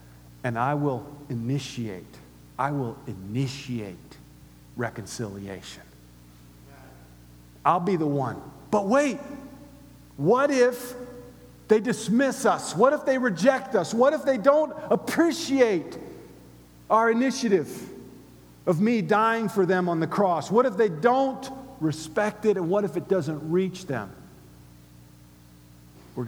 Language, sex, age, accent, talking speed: English, male, 50-69, American, 120 wpm